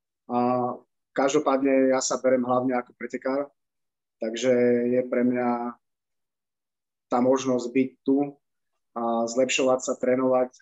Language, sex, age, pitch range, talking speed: Slovak, male, 20-39, 120-130 Hz, 115 wpm